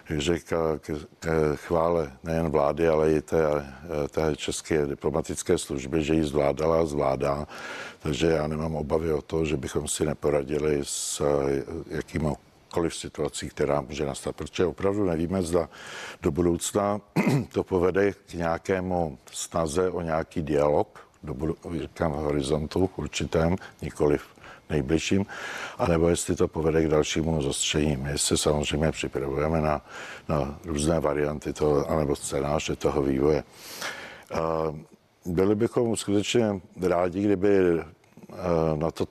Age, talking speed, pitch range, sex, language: 60-79, 125 wpm, 75-85 Hz, male, Czech